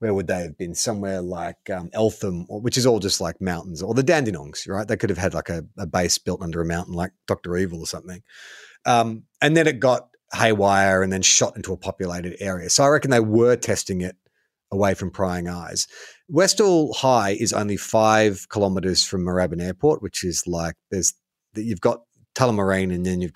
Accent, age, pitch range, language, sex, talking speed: Australian, 30-49, 95-125 Hz, English, male, 205 wpm